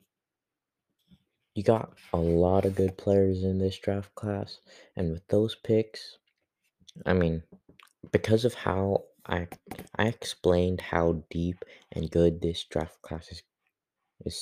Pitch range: 80-95 Hz